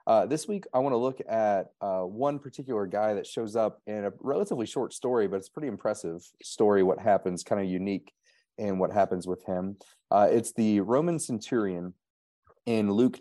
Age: 30-49